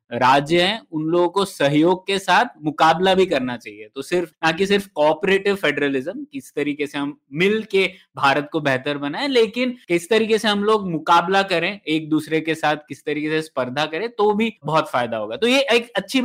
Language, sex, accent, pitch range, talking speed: Hindi, male, native, 160-220 Hz, 200 wpm